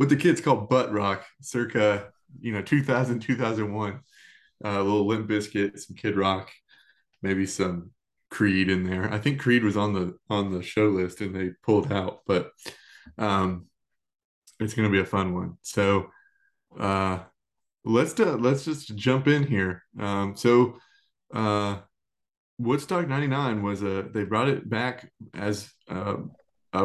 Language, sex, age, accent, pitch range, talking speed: English, male, 20-39, American, 95-120 Hz, 155 wpm